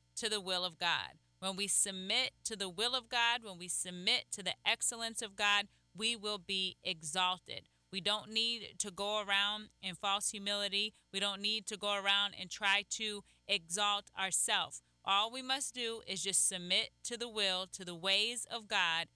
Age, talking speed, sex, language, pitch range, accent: 30-49, 190 wpm, female, English, 185-225 Hz, American